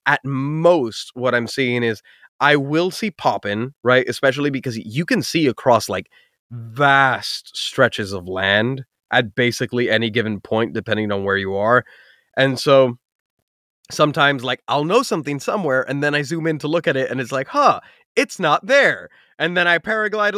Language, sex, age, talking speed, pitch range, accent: English, male, 20-39, 175 wpm, 110-150 Hz, American